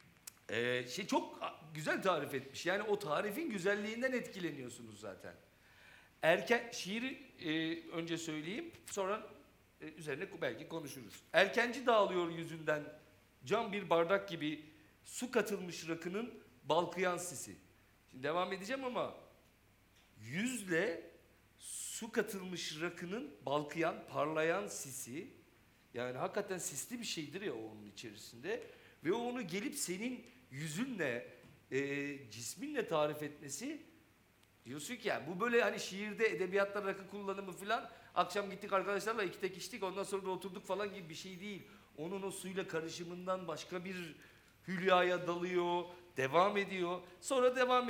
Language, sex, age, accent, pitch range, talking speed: Turkish, male, 50-69, native, 145-205 Hz, 125 wpm